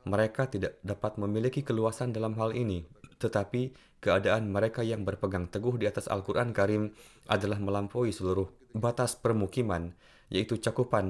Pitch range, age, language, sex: 95-115 Hz, 20-39, Indonesian, male